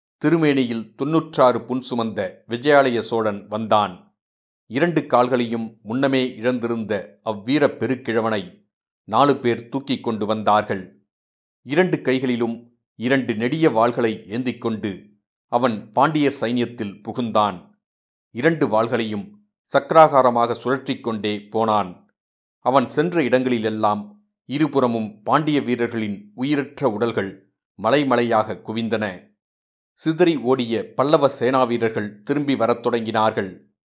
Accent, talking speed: native, 90 wpm